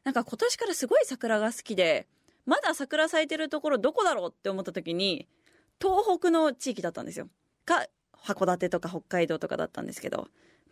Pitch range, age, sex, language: 195-290 Hz, 20-39, female, Japanese